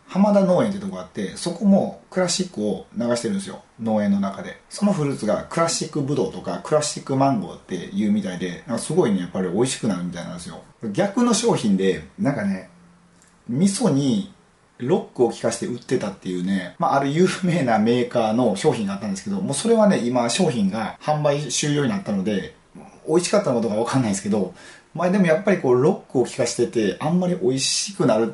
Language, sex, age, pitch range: Japanese, male, 30-49, 125-200 Hz